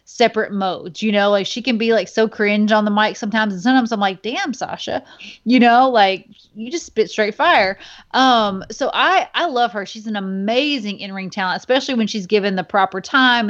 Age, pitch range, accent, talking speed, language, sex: 30-49, 190-235 Hz, American, 210 wpm, English, female